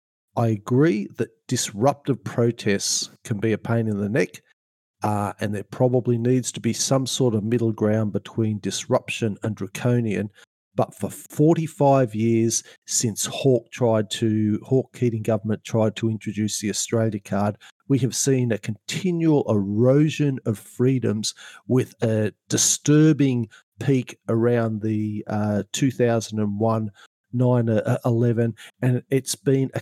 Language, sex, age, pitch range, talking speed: English, male, 50-69, 110-140 Hz, 135 wpm